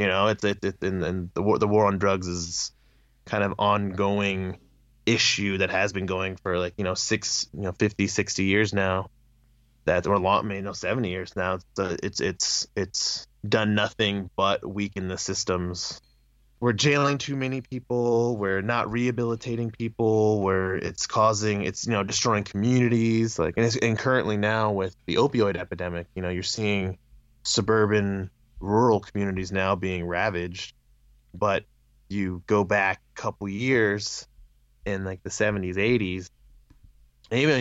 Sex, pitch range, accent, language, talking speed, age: male, 90-110 Hz, American, English, 165 wpm, 20-39